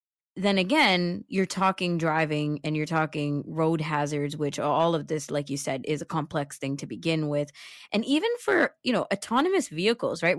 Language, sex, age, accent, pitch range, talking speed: English, female, 20-39, American, 150-185 Hz, 185 wpm